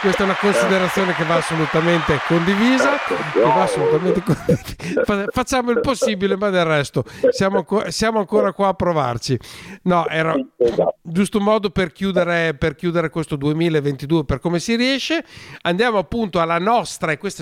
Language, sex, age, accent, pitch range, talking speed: Italian, male, 50-69, native, 135-185 Hz, 140 wpm